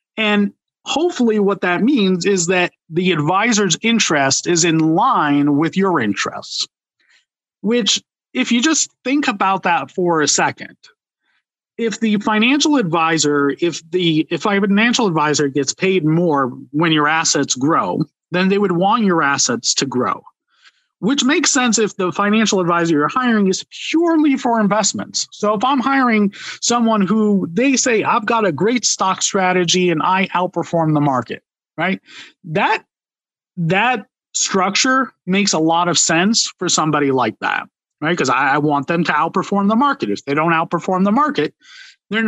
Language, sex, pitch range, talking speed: English, male, 165-235 Hz, 160 wpm